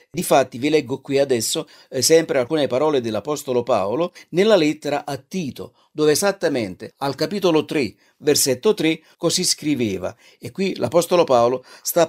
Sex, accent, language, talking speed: male, native, Italian, 150 wpm